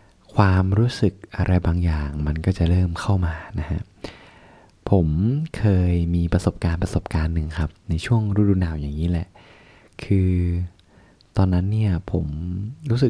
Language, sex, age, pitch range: Thai, male, 20-39, 85-100 Hz